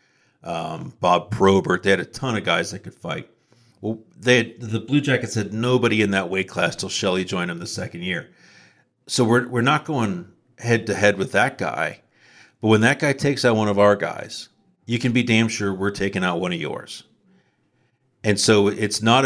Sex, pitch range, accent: male, 100-120 Hz, American